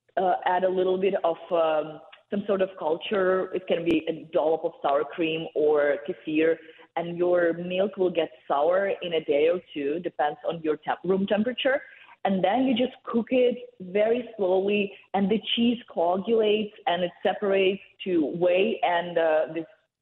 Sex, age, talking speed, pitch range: female, 30-49, 175 wpm, 170-215 Hz